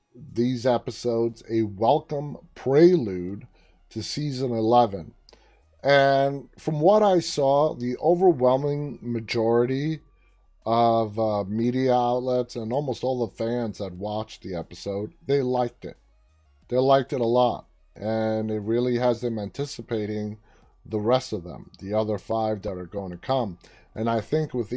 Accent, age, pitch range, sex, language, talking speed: American, 30-49, 100-125 Hz, male, English, 145 wpm